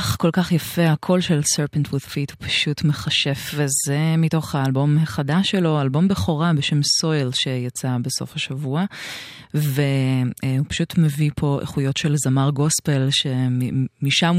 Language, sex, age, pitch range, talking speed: Hebrew, female, 30-49, 135-160 Hz, 125 wpm